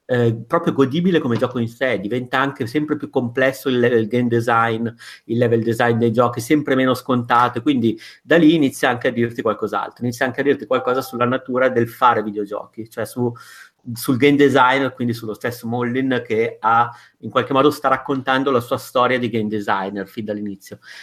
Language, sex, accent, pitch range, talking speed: Italian, male, native, 115-130 Hz, 185 wpm